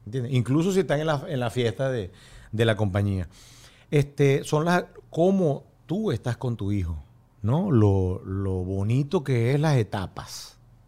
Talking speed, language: 165 wpm, Spanish